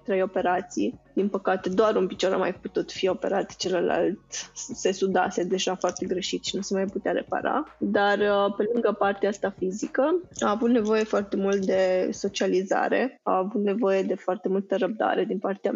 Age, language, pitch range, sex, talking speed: 20-39, Romanian, 190-220 Hz, female, 175 wpm